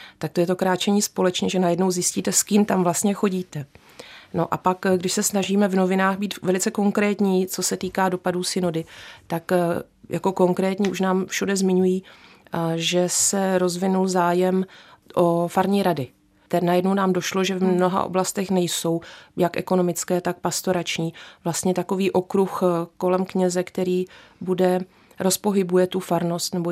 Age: 30-49